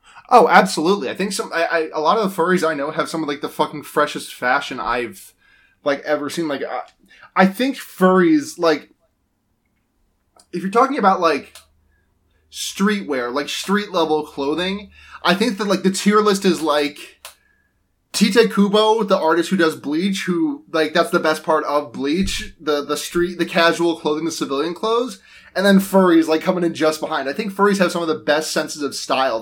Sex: male